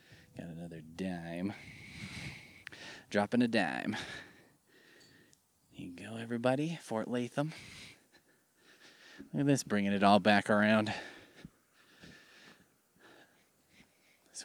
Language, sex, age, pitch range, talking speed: English, male, 20-39, 110-150 Hz, 85 wpm